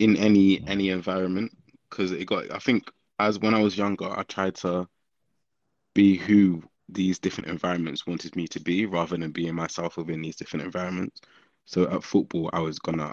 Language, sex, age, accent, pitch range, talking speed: English, male, 20-39, British, 85-95 Hz, 185 wpm